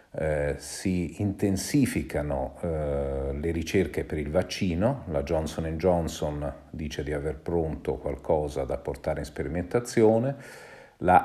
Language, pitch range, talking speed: Italian, 75-95 Hz, 115 wpm